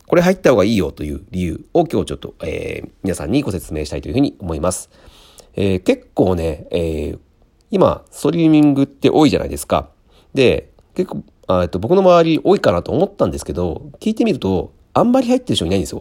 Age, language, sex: 40-59, Japanese, male